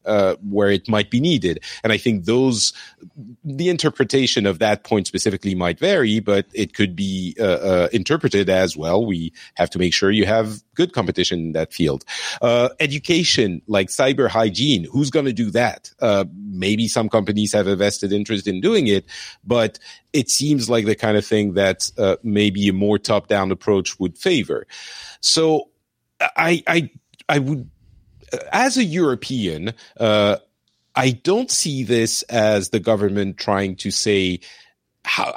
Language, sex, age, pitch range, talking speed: English, male, 40-59, 100-135 Hz, 165 wpm